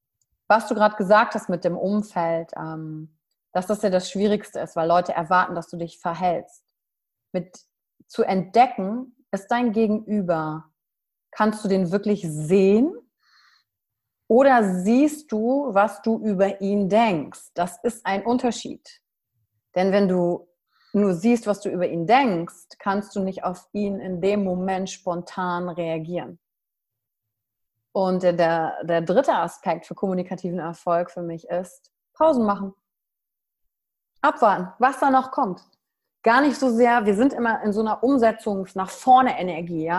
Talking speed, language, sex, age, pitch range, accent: 140 wpm, German, female, 30-49, 180-240 Hz, German